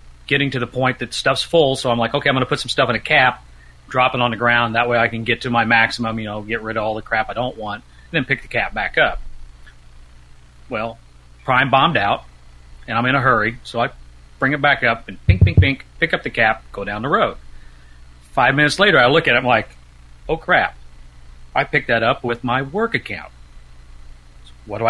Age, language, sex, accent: 40-59, English, male, American